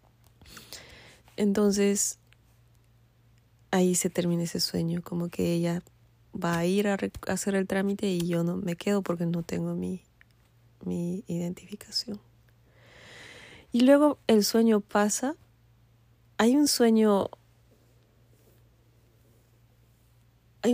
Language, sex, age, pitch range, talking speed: Spanish, female, 20-39, 115-195 Hz, 105 wpm